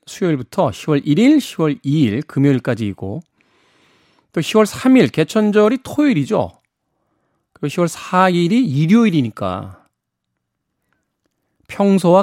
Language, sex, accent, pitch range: Korean, male, native, 120-160 Hz